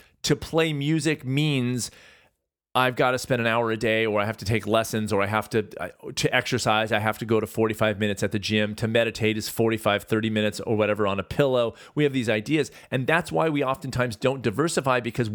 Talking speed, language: 225 wpm, English